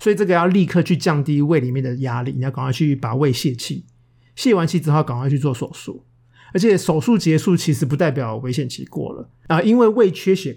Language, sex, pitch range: Chinese, male, 130-165 Hz